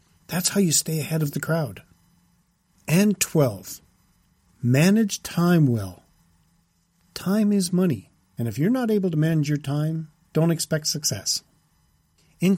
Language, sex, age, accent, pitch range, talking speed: English, male, 50-69, American, 125-180 Hz, 140 wpm